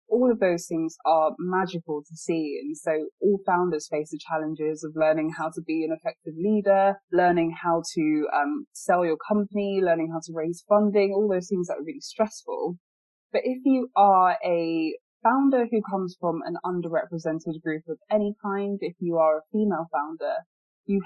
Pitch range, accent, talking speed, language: 155-200 Hz, British, 180 wpm, English